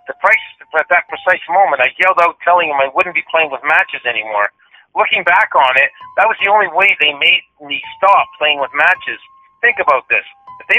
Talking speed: 215 wpm